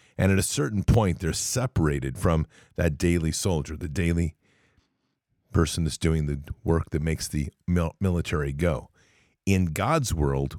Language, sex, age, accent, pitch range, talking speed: English, male, 50-69, American, 80-105 Hz, 145 wpm